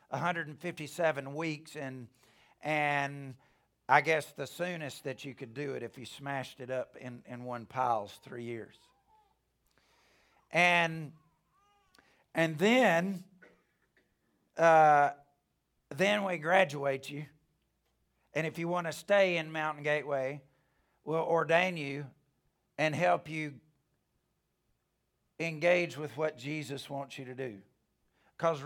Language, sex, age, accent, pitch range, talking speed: English, male, 50-69, American, 135-165 Hz, 125 wpm